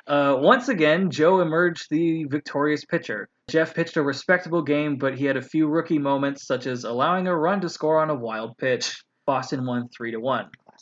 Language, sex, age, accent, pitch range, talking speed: English, male, 20-39, American, 125-170 Hz, 200 wpm